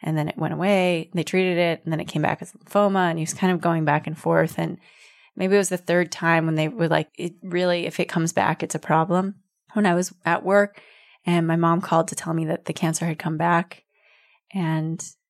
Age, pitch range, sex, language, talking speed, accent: 20-39, 170-205 Hz, female, English, 245 wpm, American